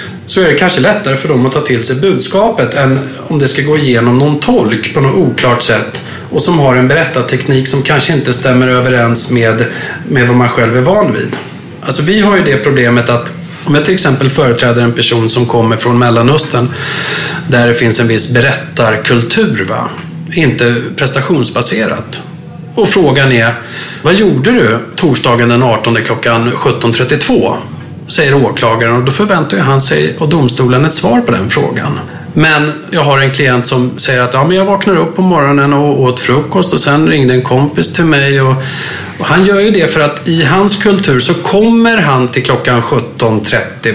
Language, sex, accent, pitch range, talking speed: English, male, Swedish, 120-160 Hz, 180 wpm